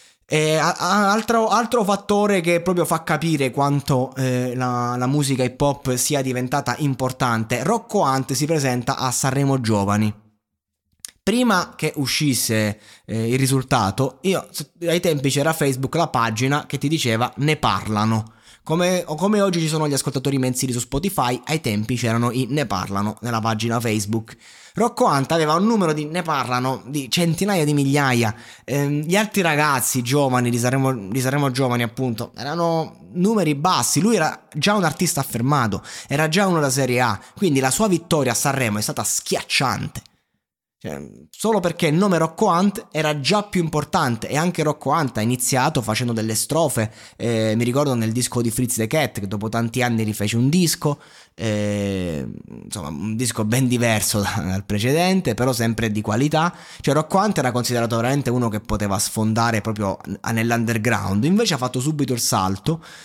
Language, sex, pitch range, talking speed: Italian, male, 115-155 Hz, 165 wpm